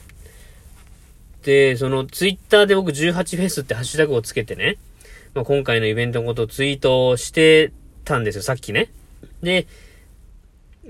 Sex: male